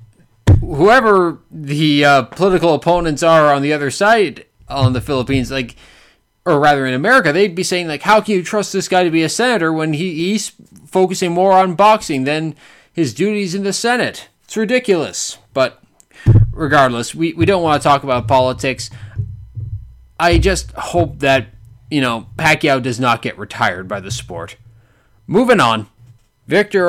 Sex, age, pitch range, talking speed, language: male, 20-39, 125-185 Hz, 165 wpm, English